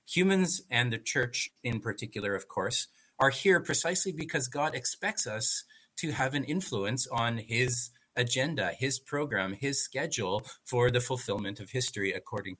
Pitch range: 105-135 Hz